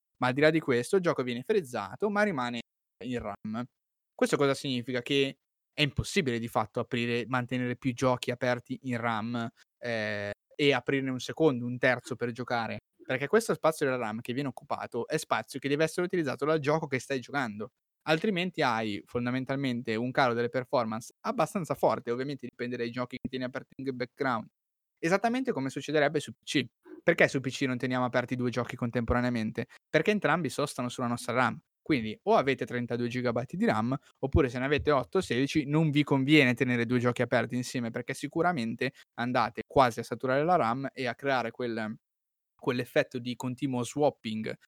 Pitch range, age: 120-145 Hz, 20-39